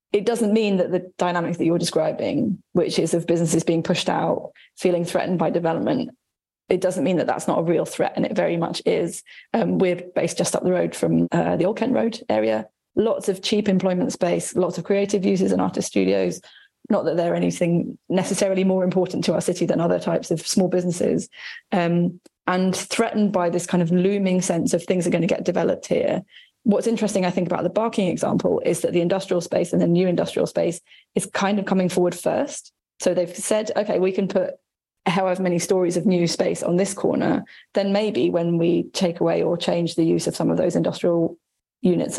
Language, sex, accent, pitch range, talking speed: English, female, British, 170-195 Hz, 210 wpm